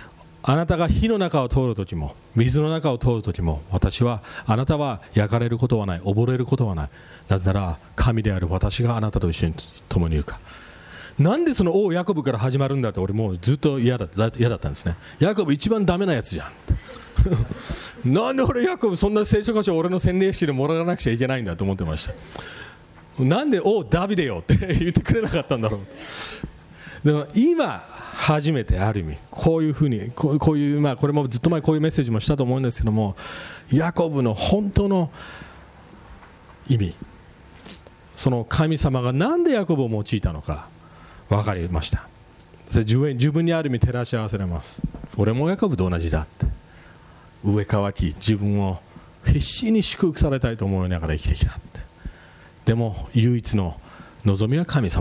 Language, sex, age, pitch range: English, male, 40-59, 95-150 Hz